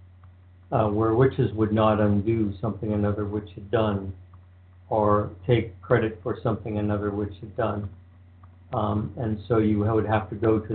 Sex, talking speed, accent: male, 160 wpm, American